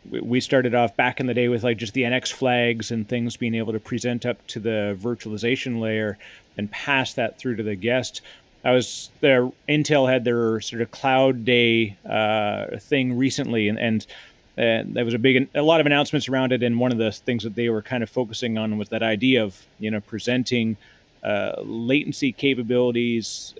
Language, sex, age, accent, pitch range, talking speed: English, male, 30-49, American, 115-135 Hz, 200 wpm